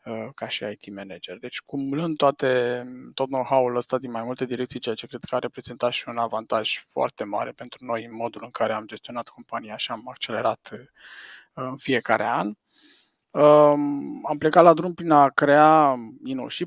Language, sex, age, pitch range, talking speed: Romanian, male, 20-39, 125-145 Hz, 175 wpm